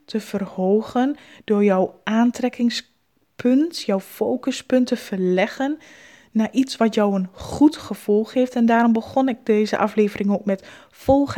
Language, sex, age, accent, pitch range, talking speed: Dutch, female, 20-39, Dutch, 205-255 Hz, 135 wpm